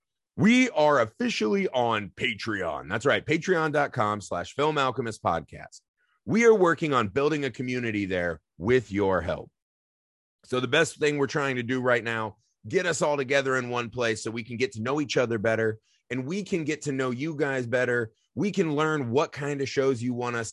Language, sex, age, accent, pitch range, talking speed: English, male, 30-49, American, 115-155 Hz, 195 wpm